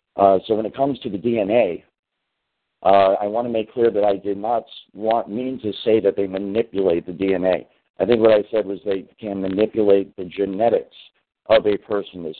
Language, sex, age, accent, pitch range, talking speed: English, male, 50-69, American, 95-110 Hz, 205 wpm